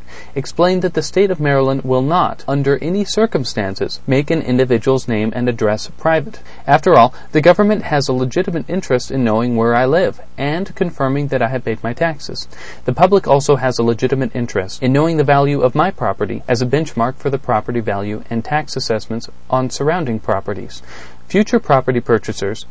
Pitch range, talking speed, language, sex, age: 115-155 Hz, 180 wpm, English, male, 40-59